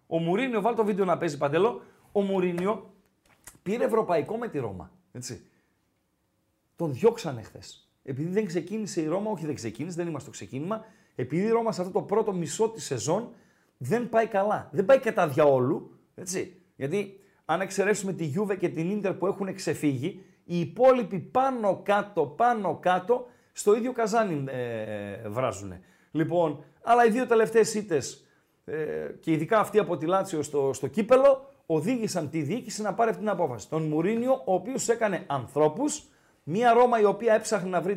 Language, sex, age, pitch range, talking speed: Greek, male, 40-59, 165-225 Hz, 160 wpm